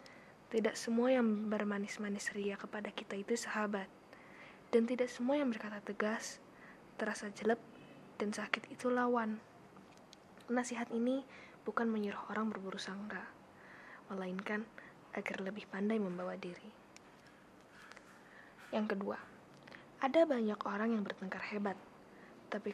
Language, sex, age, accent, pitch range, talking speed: Indonesian, female, 20-39, native, 205-240 Hz, 115 wpm